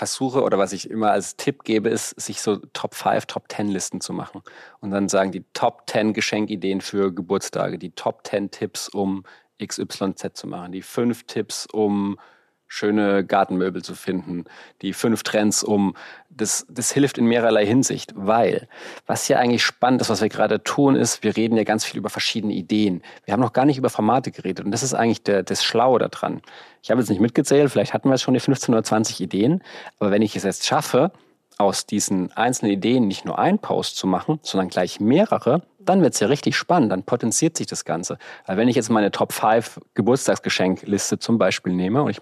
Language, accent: German, German